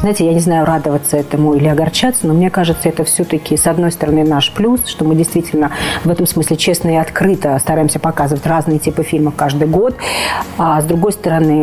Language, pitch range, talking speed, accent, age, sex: Russian, 160-200 Hz, 195 wpm, native, 40-59, female